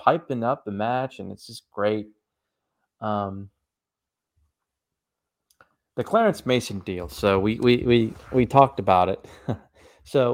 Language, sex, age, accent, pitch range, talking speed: English, male, 30-49, American, 100-140 Hz, 130 wpm